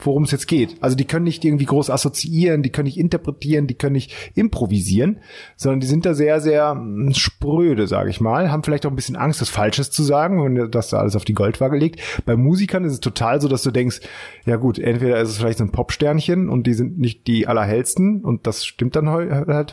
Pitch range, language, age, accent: 115-150 Hz, German, 30-49, German